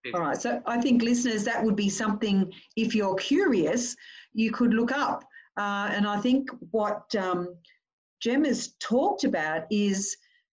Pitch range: 190-245 Hz